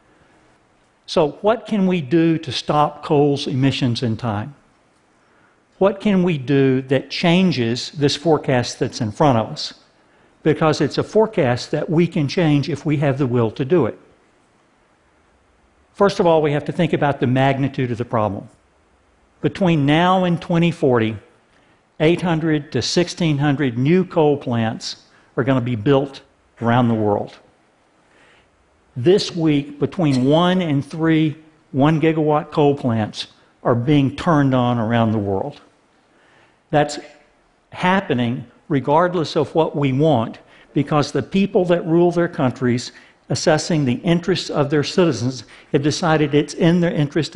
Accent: American